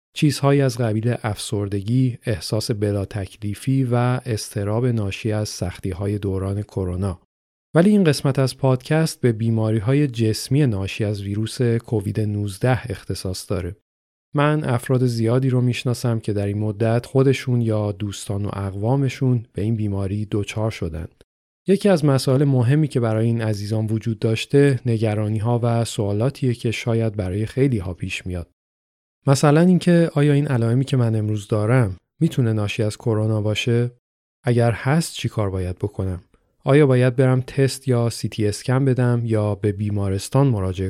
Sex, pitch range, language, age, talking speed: male, 105-130 Hz, Persian, 40-59, 150 wpm